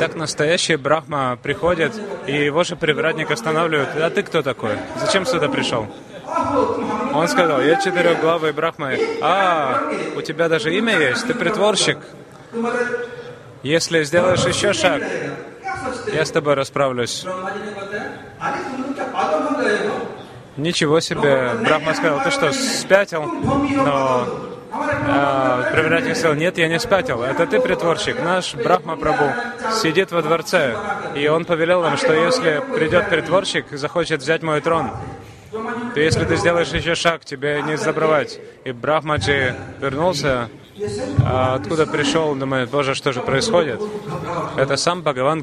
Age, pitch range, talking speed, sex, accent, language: 20-39, 140-195 Hz, 130 wpm, male, native, Russian